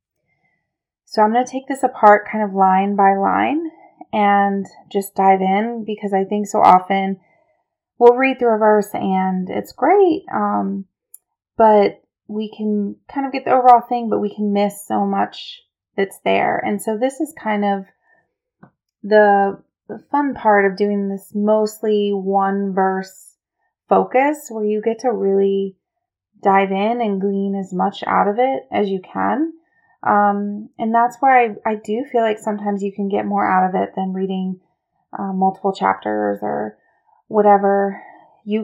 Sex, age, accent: female, 30-49, American